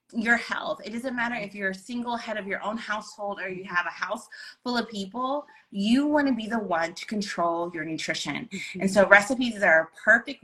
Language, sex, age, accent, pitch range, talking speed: English, female, 20-39, American, 175-210 Hz, 220 wpm